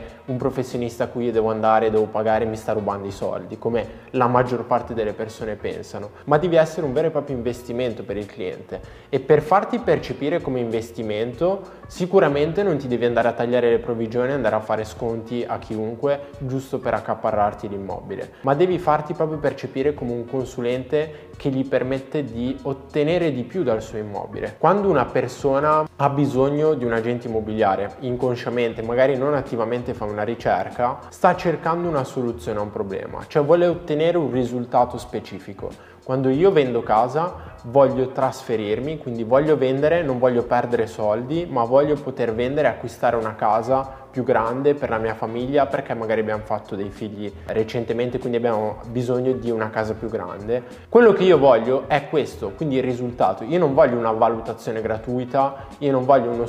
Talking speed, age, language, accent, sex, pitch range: 175 wpm, 20-39, Italian, native, male, 115-140 Hz